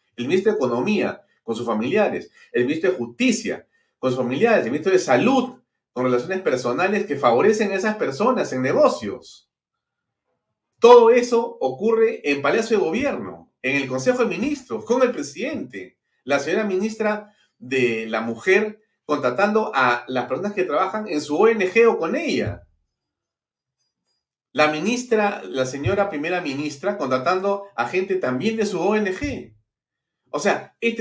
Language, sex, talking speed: Spanish, male, 150 wpm